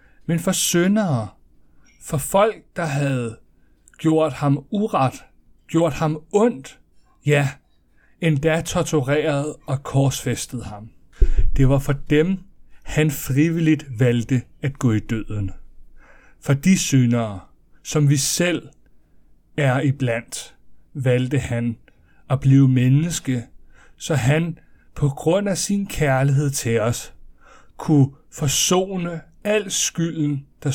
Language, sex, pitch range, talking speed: Danish, male, 120-155 Hz, 110 wpm